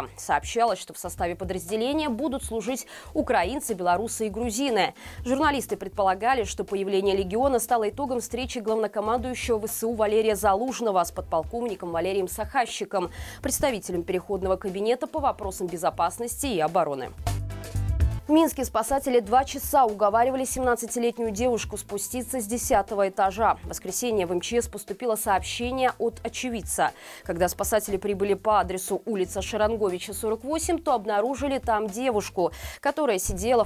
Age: 20-39